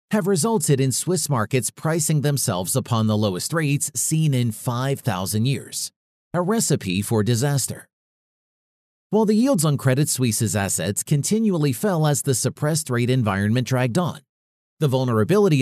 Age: 40-59